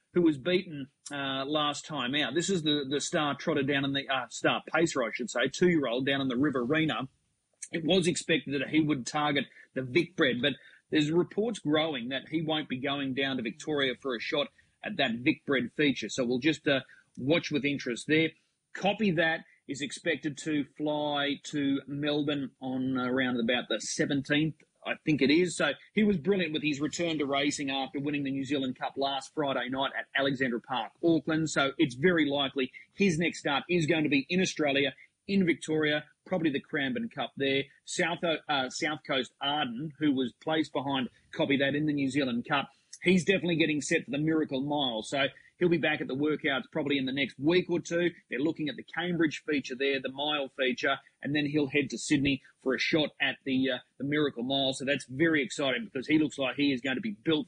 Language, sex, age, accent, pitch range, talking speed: English, male, 30-49, Australian, 135-165 Hz, 210 wpm